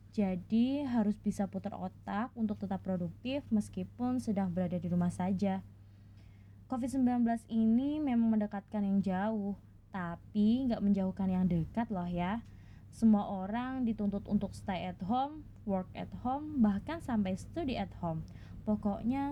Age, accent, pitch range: 20-39, native, 185-230 Hz